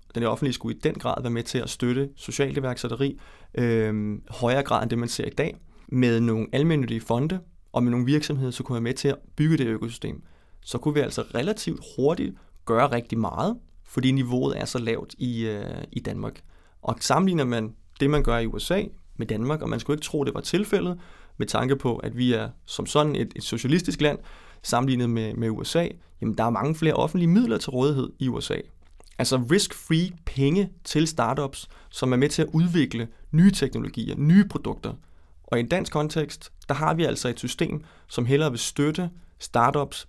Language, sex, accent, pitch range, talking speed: Danish, male, native, 115-150 Hz, 200 wpm